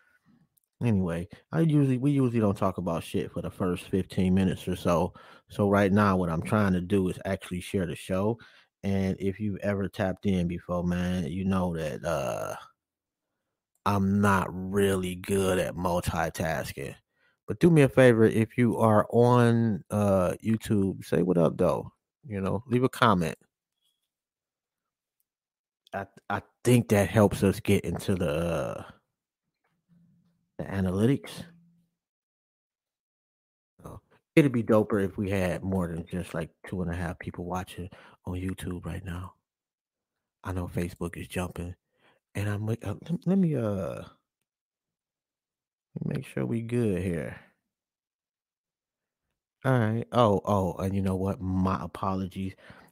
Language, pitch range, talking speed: English, 90-110 Hz, 145 wpm